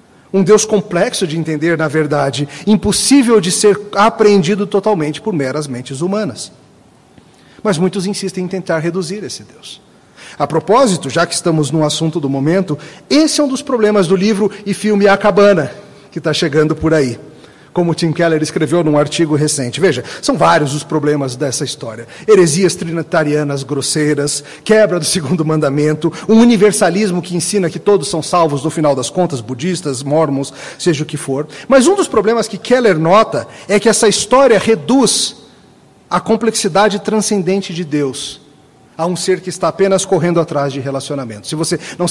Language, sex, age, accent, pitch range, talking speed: Portuguese, male, 40-59, Brazilian, 155-205 Hz, 170 wpm